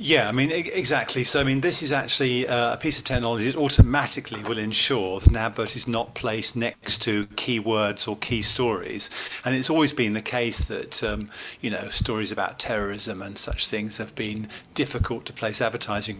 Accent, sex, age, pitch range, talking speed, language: British, male, 40-59, 110-135 Hz, 195 wpm, English